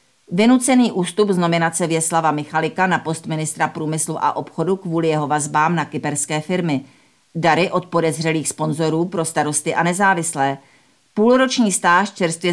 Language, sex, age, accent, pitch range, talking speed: Czech, female, 40-59, native, 150-185 Hz, 140 wpm